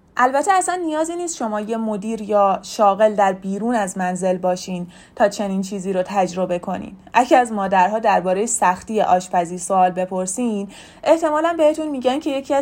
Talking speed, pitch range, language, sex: 155 wpm, 185-245 Hz, Persian, female